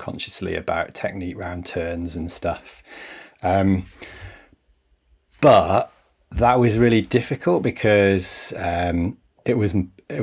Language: English